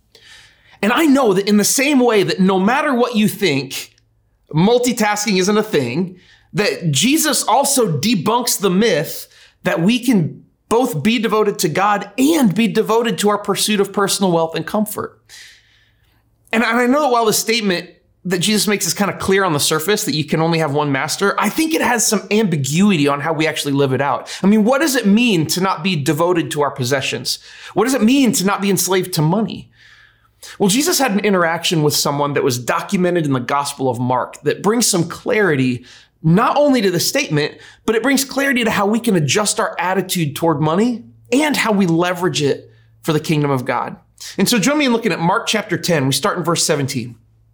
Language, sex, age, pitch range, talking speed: English, male, 30-49, 145-215 Hz, 210 wpm